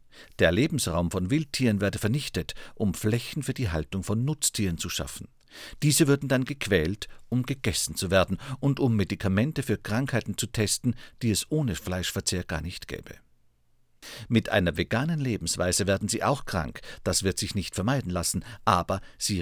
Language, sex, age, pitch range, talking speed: German, male, 50-69, 90-125 Hz, 165 wpm